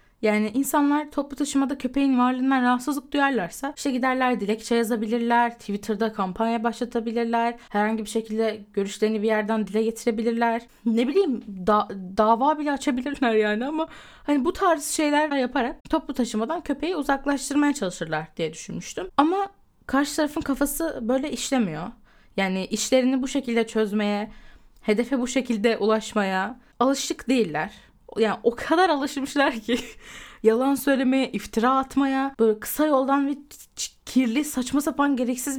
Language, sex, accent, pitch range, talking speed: Turkish, female, native, 220-280 Hz, 135 wpm